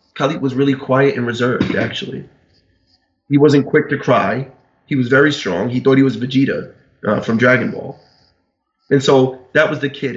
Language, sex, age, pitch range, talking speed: English, male, 30-49, 120-135 Hz, 185 wpm